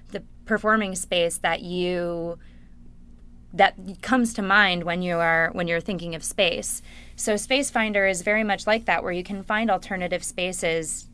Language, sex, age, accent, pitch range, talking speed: English, female, 20-39, American, 170-205 Hz, 165 wpm